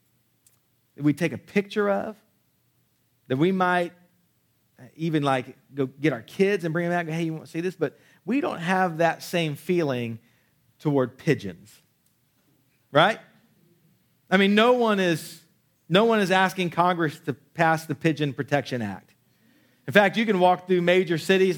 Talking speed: 160 wpm